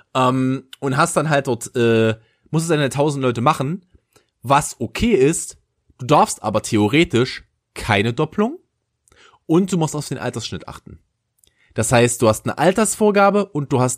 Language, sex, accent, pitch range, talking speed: German, male, German, 105-140 Hz, 165 wpm